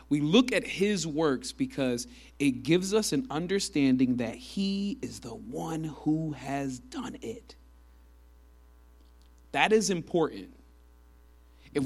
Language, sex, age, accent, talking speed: English, male, 30-49, American, 120 wpm